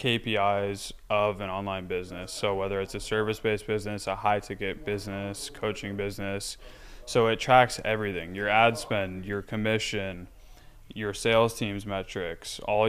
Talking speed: 145 wpm